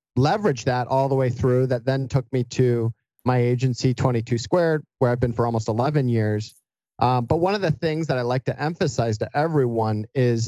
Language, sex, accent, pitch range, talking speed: English, male, American, 120-145 Hz, 220 wpm